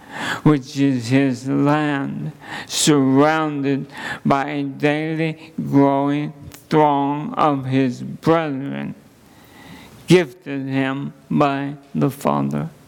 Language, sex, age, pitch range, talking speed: English, male, 50-69, 115-140 Hz, 85 wpm